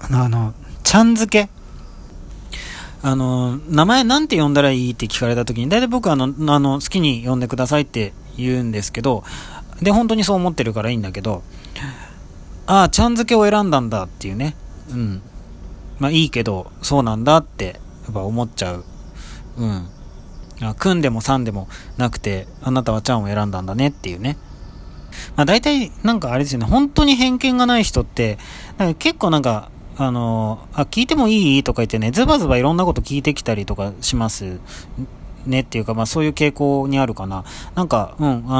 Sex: male